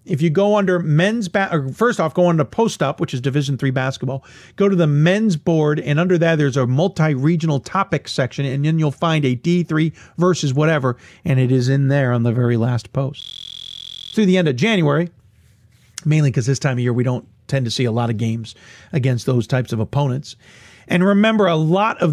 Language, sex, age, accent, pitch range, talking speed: English, male, 40-59, American, 130-165 Hz, 215 wpm